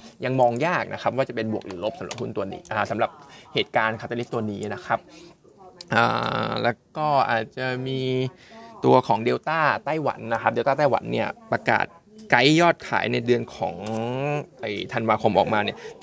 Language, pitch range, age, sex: Thai, 115-145 Hz, 20-39, male